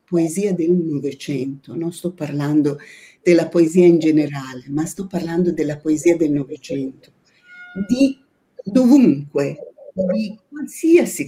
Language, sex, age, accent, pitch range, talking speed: Italian, female, 50-69, native, 165-265 Hz, 110 wpm